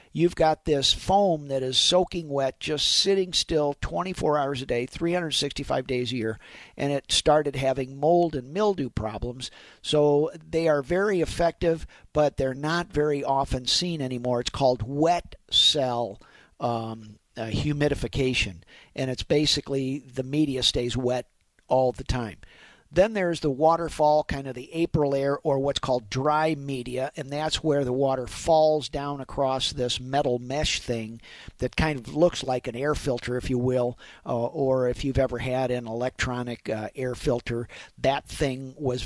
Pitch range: 125-150 Hz